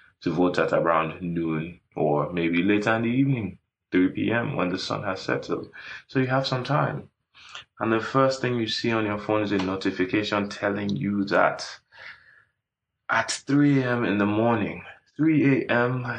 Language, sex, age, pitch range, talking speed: English, male, 20-39, 90-120 Hz, 170 wpm